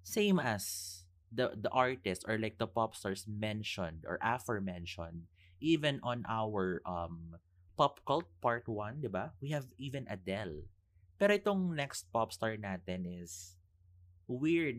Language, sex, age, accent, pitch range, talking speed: English, male, 30-49, Filipino, 90-135 Hz, 140 wpm